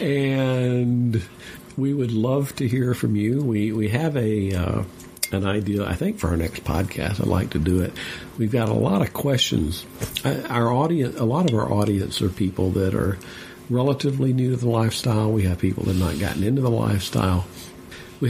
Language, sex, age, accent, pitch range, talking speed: English, male, 60-79, American, 90-120 Hz, 195 wpm